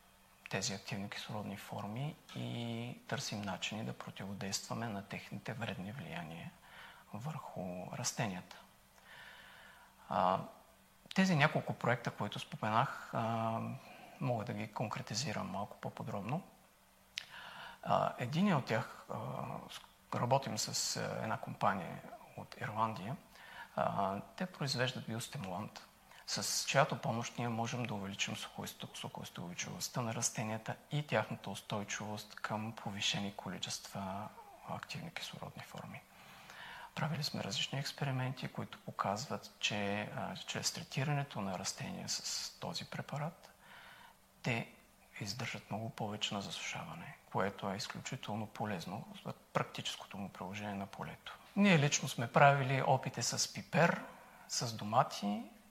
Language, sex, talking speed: Bulgarian, male, 105 wpm